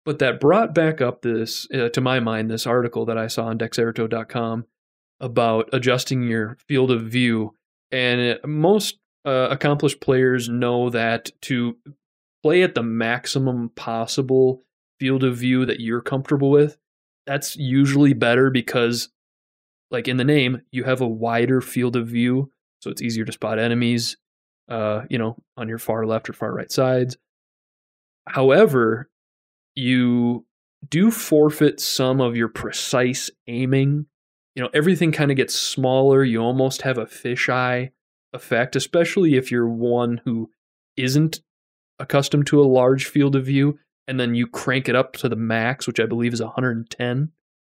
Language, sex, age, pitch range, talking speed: English, male, 20-39, 115-135 Hz, 155 wpm